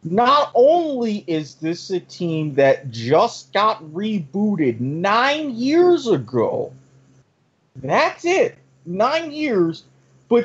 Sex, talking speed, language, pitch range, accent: male, 105 wpm, English, 135-205 Hz, American